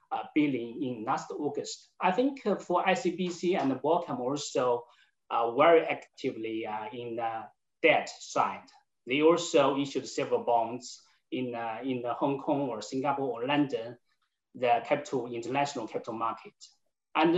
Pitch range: 130-180 Hz